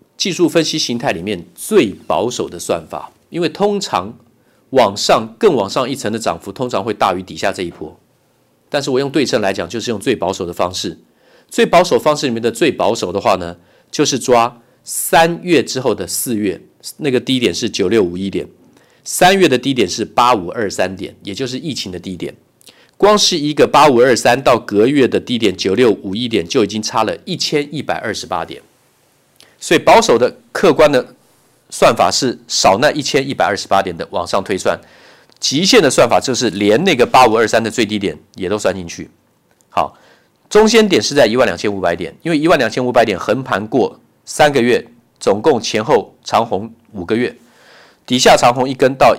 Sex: male